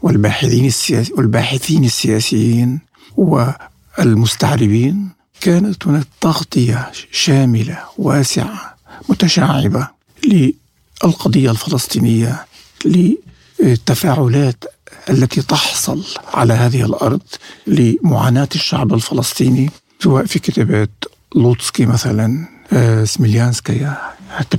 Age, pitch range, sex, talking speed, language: 60-79, 115-160 Hz, male, 65 wpm, Arabic